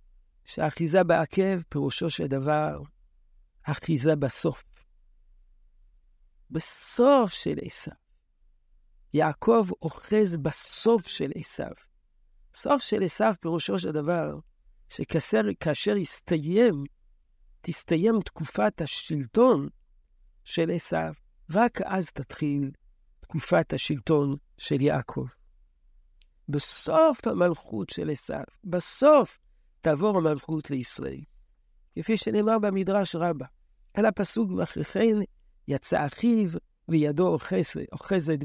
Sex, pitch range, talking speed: male, 135-190 Hz, 85 wpm